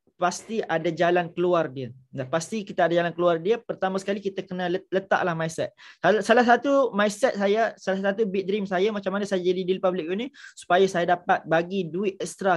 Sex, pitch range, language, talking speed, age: male, 175-210 Hz, Malay, 190 wpm, 20-39